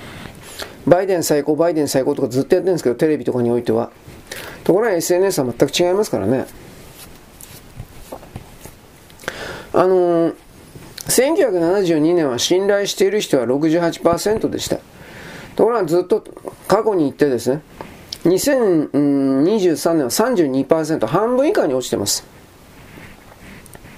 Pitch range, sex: 140-200 Hz, male